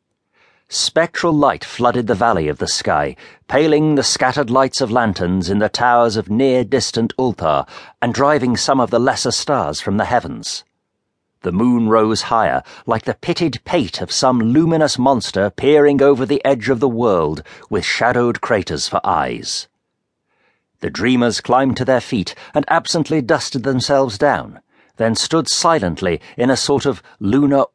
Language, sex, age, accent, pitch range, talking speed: English, male, 50-69, British, 110-140 Hz, 160 wpm